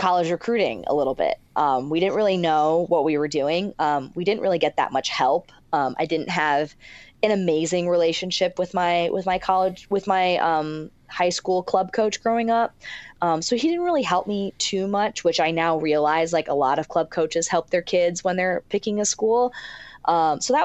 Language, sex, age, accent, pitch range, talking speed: English, female, 20-39, American, 160-200 Hz, 210 wpm